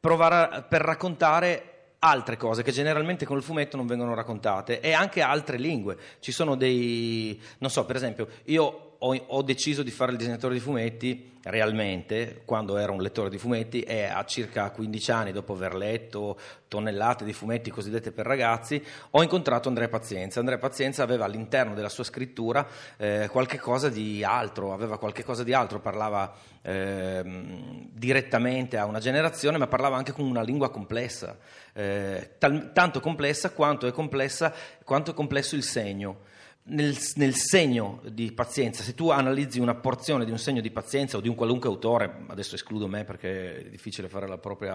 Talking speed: 175 wpm